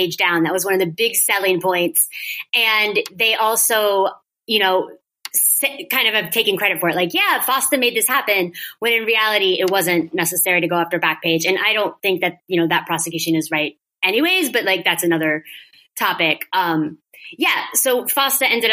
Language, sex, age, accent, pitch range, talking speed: English, female, 20-39, American, 175-230 Hz, 190 wpm